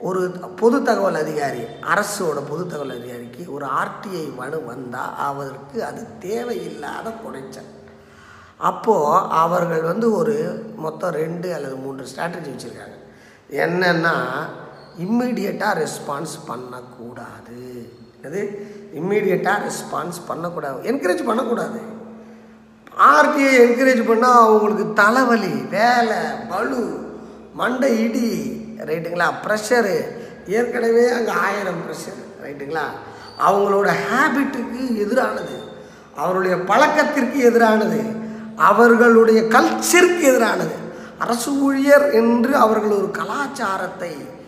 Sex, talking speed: female, 90 wpm